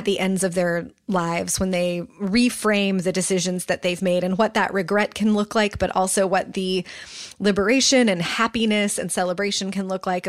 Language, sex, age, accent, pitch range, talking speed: English, female, 20-39, American, 185-215 Hz, 195 wpm